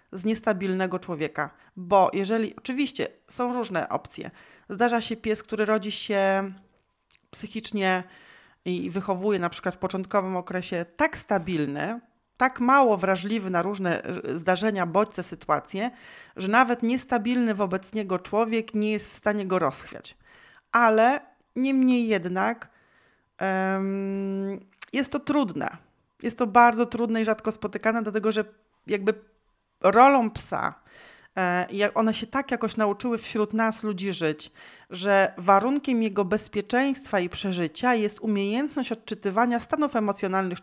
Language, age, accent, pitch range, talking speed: Polish, 30-49, native, 190-235 Hz, 125 wpm